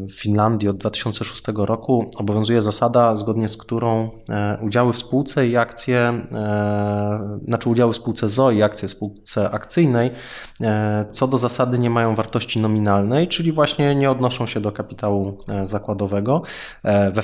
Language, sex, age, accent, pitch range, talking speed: Polish, male, 20-39, native, 110-130 Hz, 145 wpm